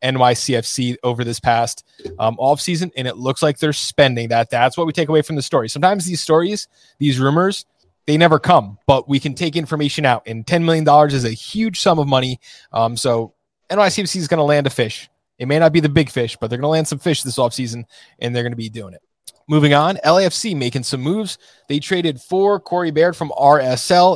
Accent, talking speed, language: American, 225 wpm, English